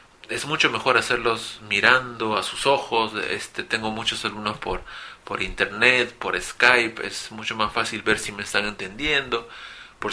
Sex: male